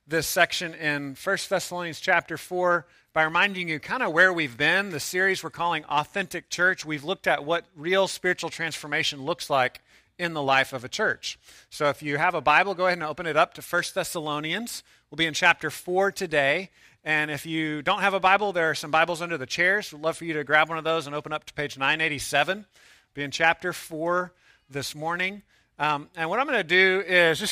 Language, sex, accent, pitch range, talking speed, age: English, male, American, 145-175 Hz, 220 wpm, 40-59